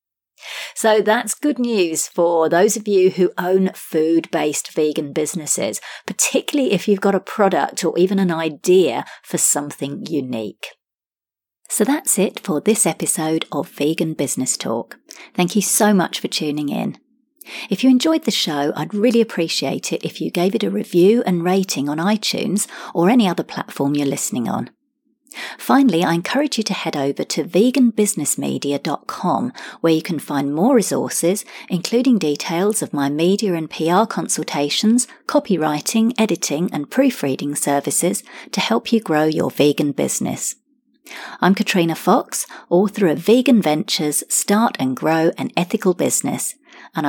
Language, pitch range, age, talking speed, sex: English, 160-230 Hz, 40-59, 150 wpm, female